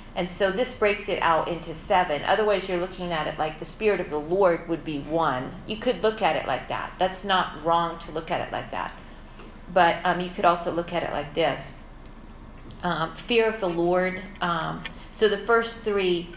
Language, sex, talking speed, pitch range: English, female, 215 wpm, 170-195 Hz